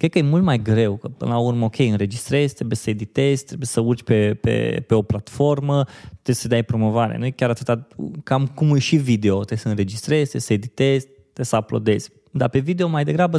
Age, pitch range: 20-39, 115-145 Hz